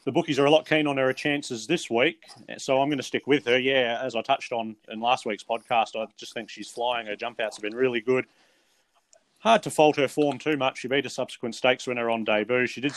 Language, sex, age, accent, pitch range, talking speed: English, male, 30-49, Australian, 120-145 Hz, 260 wpm